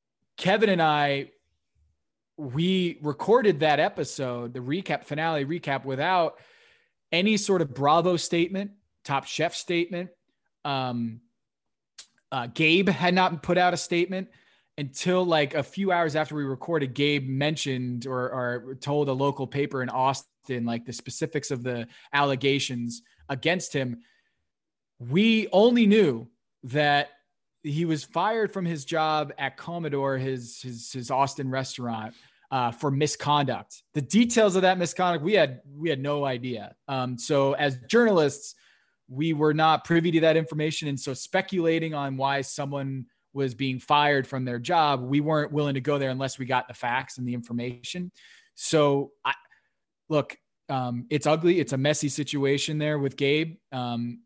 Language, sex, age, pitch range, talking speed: English, male, 20-39, 130-170 Hz, 150 wpm